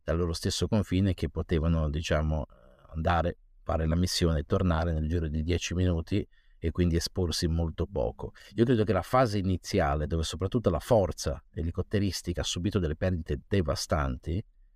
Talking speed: 160 wpm